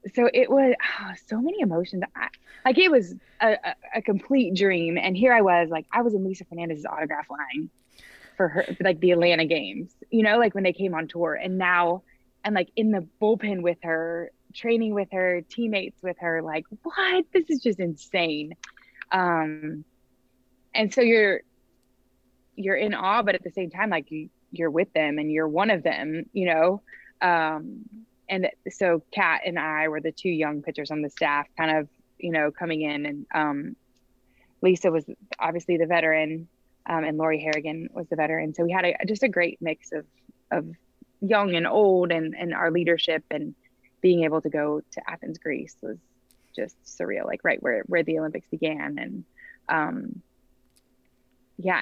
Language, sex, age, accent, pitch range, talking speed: English, female, 20-39, American, 155-200 Hz, 185 wpm